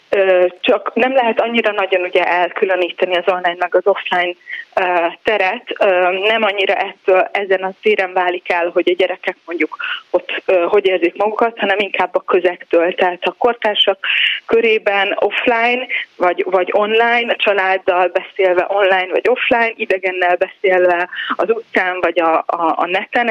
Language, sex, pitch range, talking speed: Hungarian, female, 180-215 Hz, 140 wpm